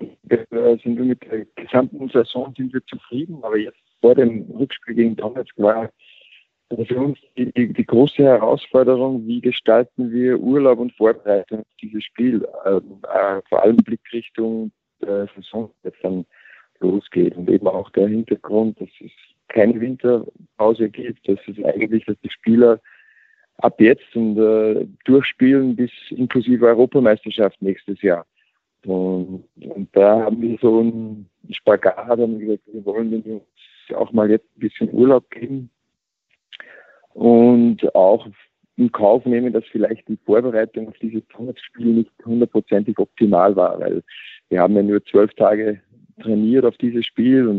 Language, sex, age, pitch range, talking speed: German, male, 50-69, 110-125 Hz, 145 wpm